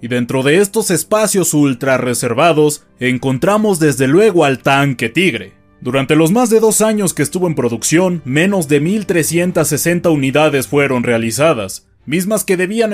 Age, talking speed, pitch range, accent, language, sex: 20-39, 150 wpm, 125-180 Hz, Mexican, Spanish, male